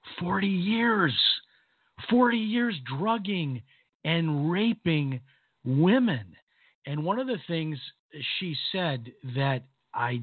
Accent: American